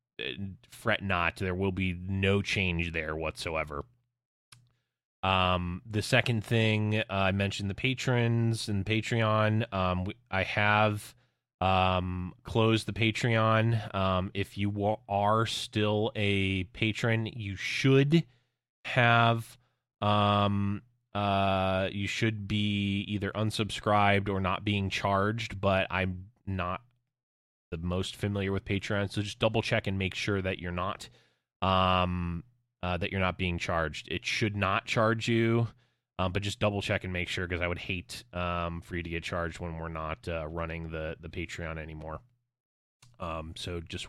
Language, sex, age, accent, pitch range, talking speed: English, male, 20-39, American, 90-110 Hz, 145 wpm